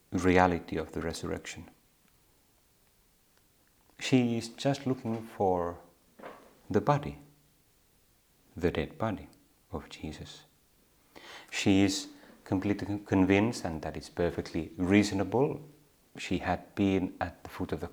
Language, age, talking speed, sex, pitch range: Finnish, 30-49, 110 wpm, male, 85-105 Hz